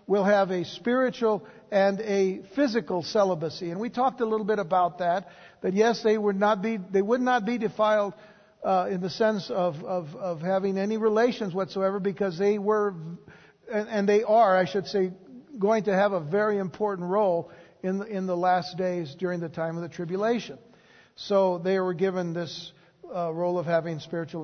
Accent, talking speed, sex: American, 190 wpm, male